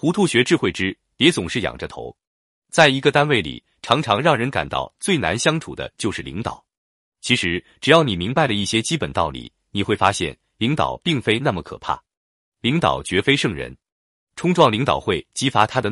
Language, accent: Chinese, native